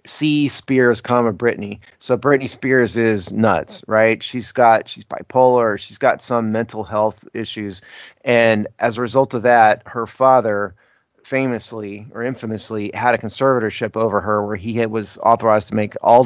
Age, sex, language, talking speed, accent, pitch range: 30-49, male, English, 160 wpm, American, 110-130 Hz